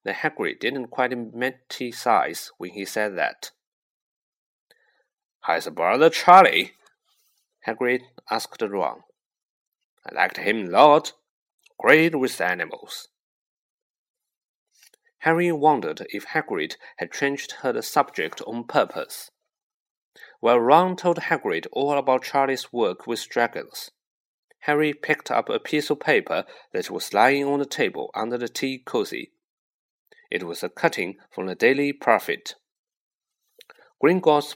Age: 30-49